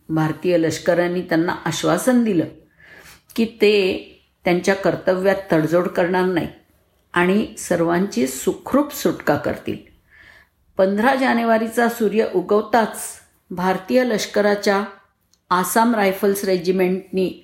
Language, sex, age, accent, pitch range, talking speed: Marathi, female, 50-69, native, 165-205 Hz, 90 wpm